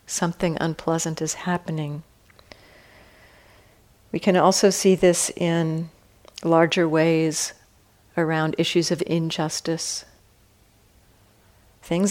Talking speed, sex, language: 85 wpm, female, English